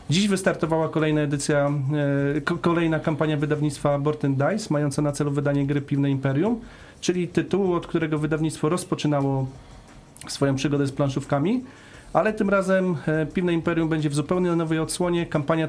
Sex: male